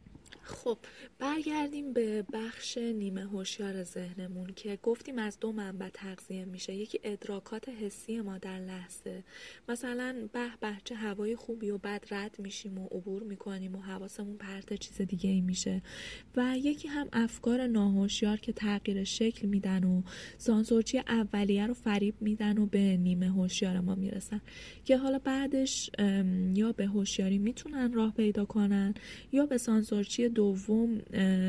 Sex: female